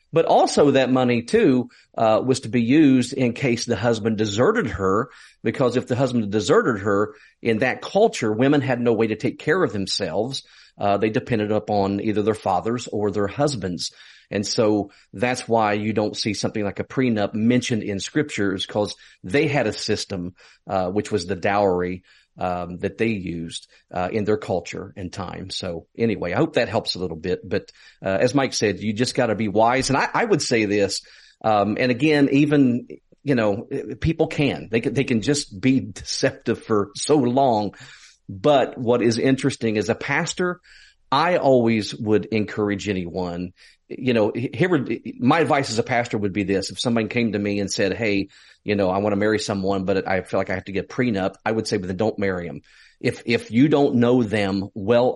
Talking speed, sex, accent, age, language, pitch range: 200 wpm, male, American, 40-59, English, 100-125 Hz